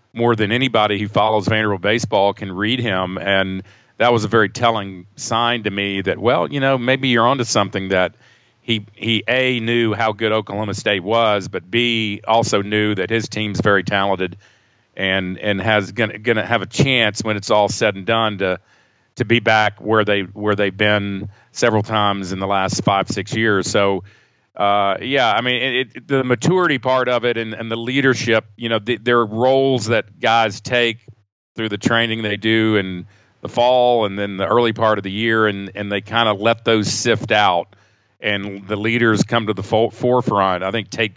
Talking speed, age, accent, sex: 195 wpm, 40-59, American, male